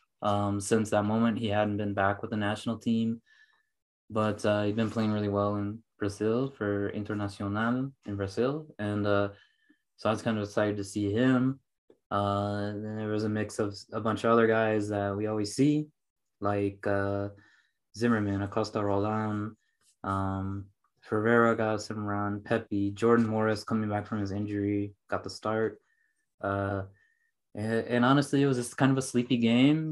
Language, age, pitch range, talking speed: English, 20-39, 100-115 Hz, 165 wpm